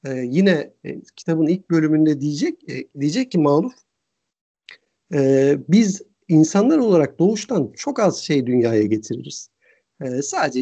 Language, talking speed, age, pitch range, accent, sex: Turkish, 130 wpm, 50-69, 140-200 Hz, native, male